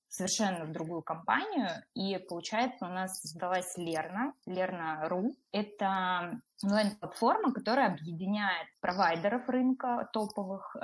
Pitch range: 175-215 Hz